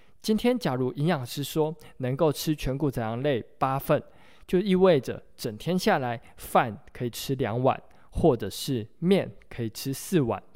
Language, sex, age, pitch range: Chinese, male, 20-39, 120-170 Hz